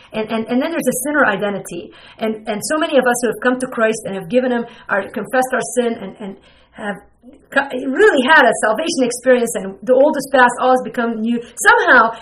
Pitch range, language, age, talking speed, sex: 230-290 Hz, English, 40-59, 220 wpm, female